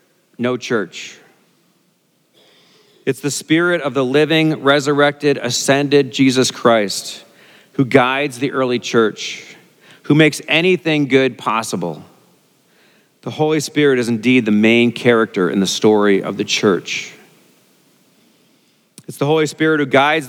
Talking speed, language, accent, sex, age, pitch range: 125 wpm, English, American, male, 40-59, 120-150 Hz